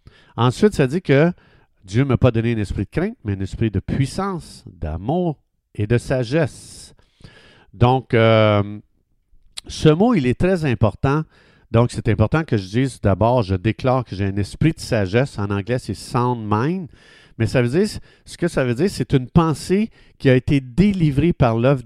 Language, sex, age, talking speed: French, male, 50-69, 190 wpm